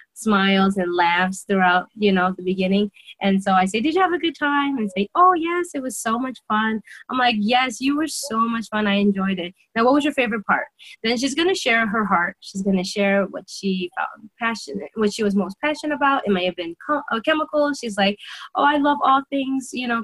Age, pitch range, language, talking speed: 20-39, 190-240 Hz, English, 235 wpm